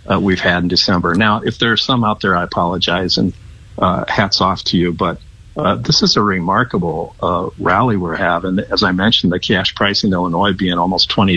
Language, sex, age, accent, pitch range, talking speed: English, male, 50-69, American, 90-110 Hz, 215 wpm